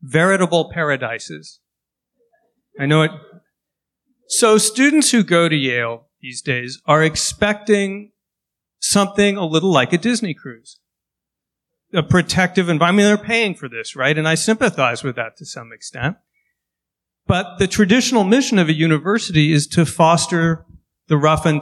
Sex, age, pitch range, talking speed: male, 50-69, 135-185 Hz, 145 wpm